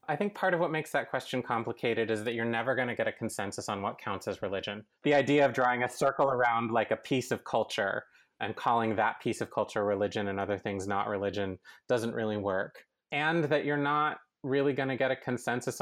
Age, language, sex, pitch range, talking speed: 30-49, English, male, 110-135 Hz, 230 wpm